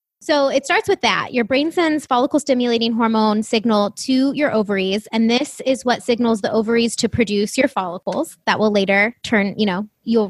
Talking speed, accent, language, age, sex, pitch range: 185 wpm, American, English, 20-39, female, 210-260 Hz